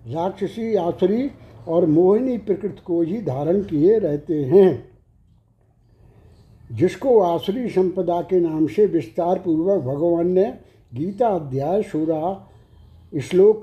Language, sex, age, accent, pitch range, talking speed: Hindi, male, 60-79, native, 160-205 Hz, 110 wpm